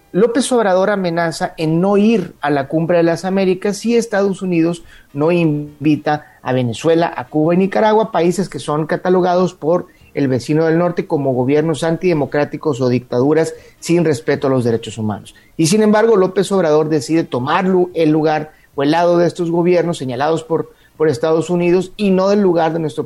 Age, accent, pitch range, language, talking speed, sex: 40-59, Mexican, 145-180 Hz, Spanish, 180 wpm, male